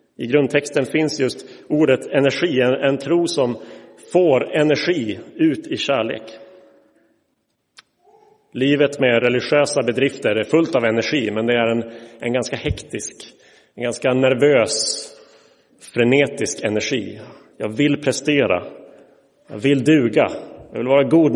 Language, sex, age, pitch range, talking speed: Swedish, male, 30-49, 120-160 Hz, 125 wpm